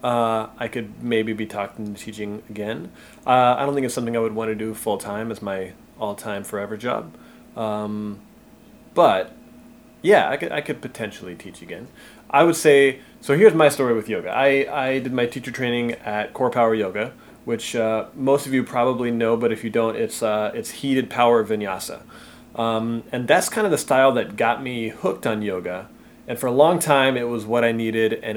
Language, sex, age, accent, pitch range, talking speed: English, male, 30-49, American, 110-130 Hz, 205 wpm